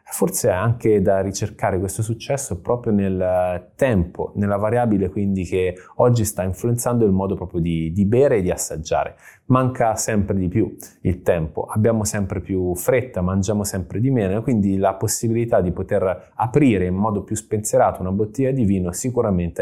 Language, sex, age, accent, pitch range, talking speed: Italian, male, 20-39, native, 95-115 Hz, 170 wpm